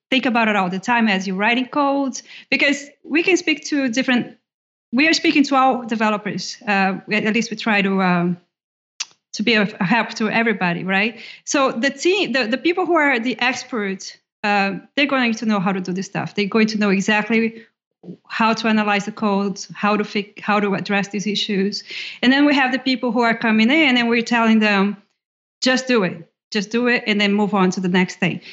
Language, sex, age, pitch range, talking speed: English, female, 30-49, 205-250 Hz, 215 wpm